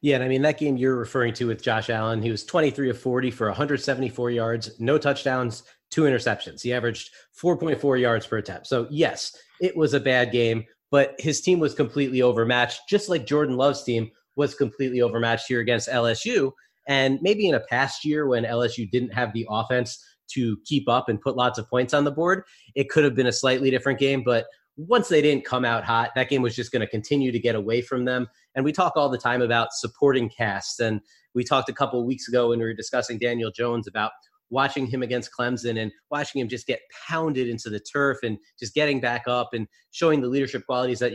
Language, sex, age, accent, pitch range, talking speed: English, male, 30-49, American, 120-140 Hz, 220 wpm